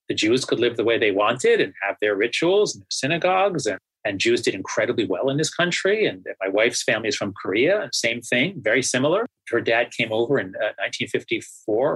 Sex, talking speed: male, 200 wpm